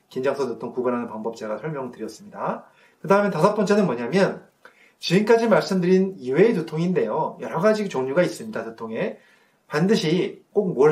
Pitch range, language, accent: 140-210 Hz, Korean, native